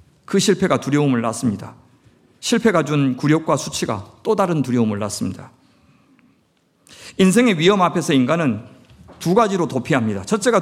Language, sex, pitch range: Korean, male, 135-195 Hz